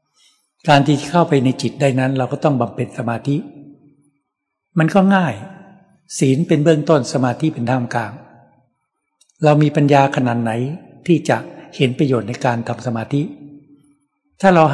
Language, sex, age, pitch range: Thai, male, 60-79, 130-160 Hz